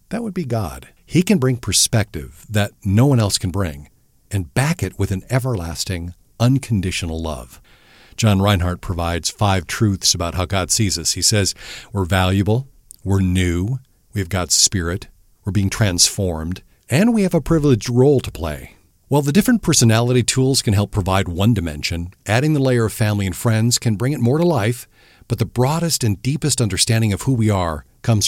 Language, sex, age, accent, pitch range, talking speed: English, male, 50-69, American, 90-125 Hz, 185 wpm